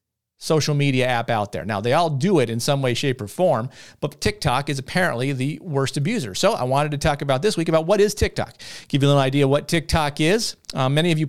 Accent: American